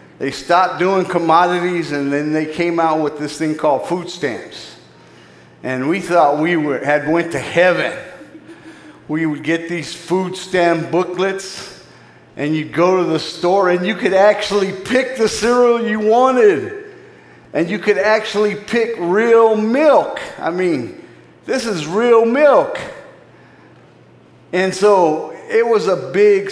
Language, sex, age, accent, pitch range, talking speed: English, male, 50-69, American, 135-200 Hz, 145 wpm